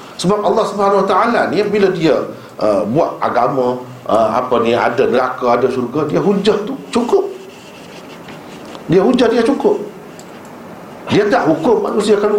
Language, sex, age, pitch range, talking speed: Malay, male, 50-69, 130-210 Hz, 150 wpm